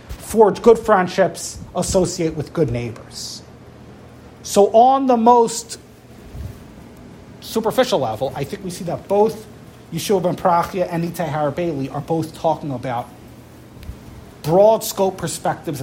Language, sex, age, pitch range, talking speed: English, male, 30-49, 145-185 Hz, 120 wpm